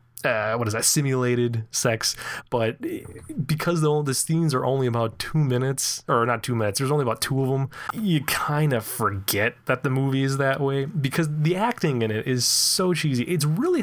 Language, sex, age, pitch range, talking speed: English, male, 20-39, 115-160 Hz, 195 wpm